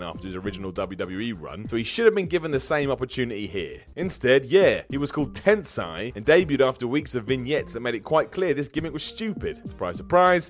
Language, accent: English, British